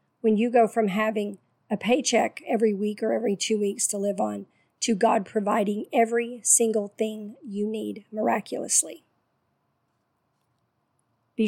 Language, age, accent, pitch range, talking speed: English, 50-69, American, 205-230 Hz, 135 wpm